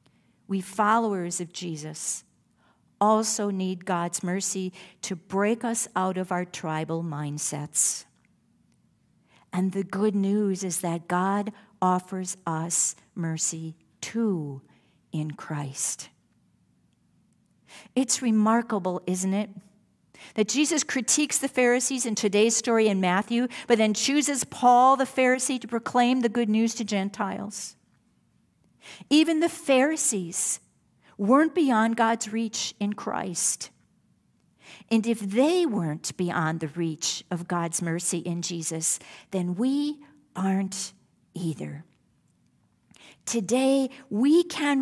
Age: 50-69